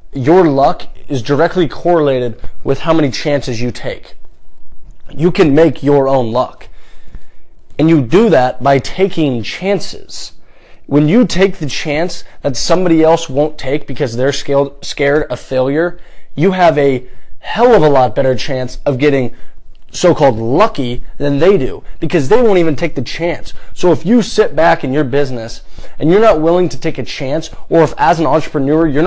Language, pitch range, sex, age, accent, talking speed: English, 130-165 Hz, male, 20-39, American, 175 wpm